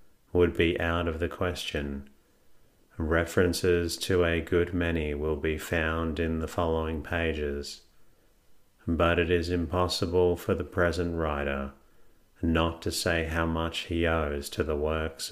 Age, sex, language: 30-49, male, English